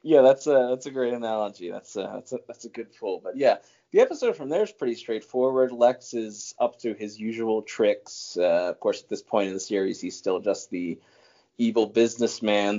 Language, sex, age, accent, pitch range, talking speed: English, male, 20-39, American, 100-125 Hz, 210 wpm